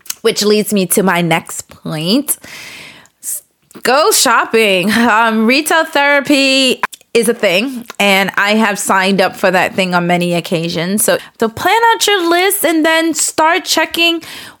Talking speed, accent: 150 wpm, American